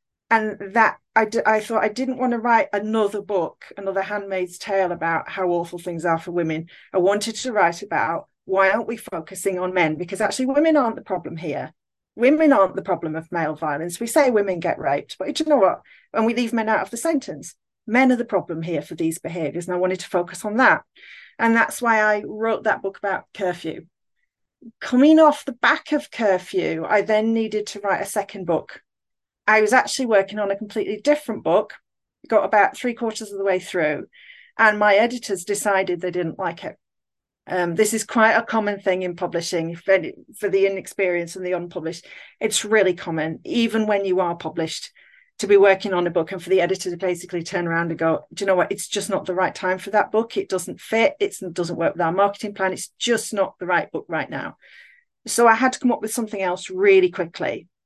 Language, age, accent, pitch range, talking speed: English, 40-59, British, 180-230 Hz, 215 wpm